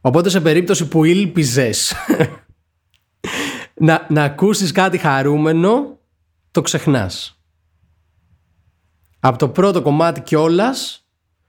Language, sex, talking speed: Greek, male, 90 wpm